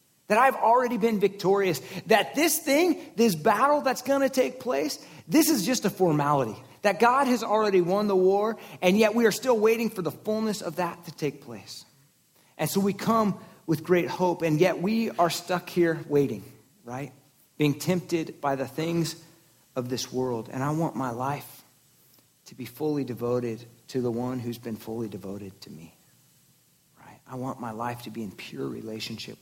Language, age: English, 40-59